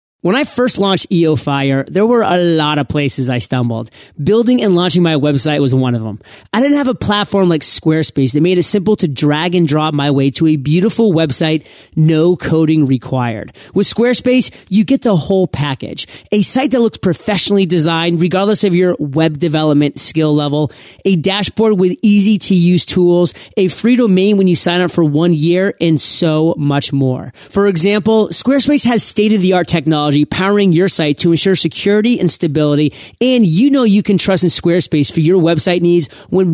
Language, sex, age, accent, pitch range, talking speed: English, male, 30-49, American, 150-200 Hz, 190 wpm